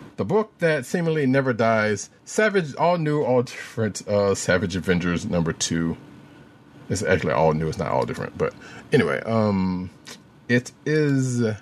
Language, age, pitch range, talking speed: English, 50-69, 100-135 Hz, 150 wpm